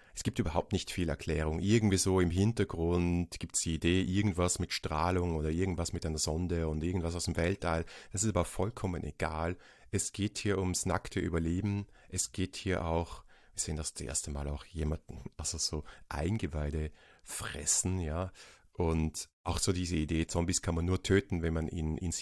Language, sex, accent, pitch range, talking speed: German, male, German, 85-100 Hz, 185 wpm